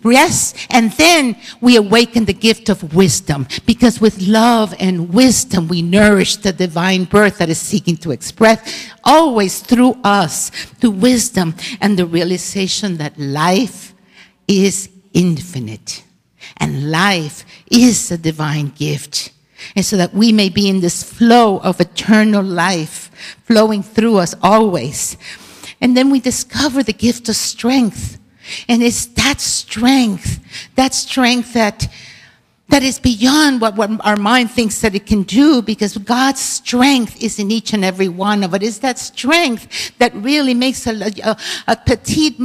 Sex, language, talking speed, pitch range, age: female, English, 150 wpm, 190-250 Hz, 60-79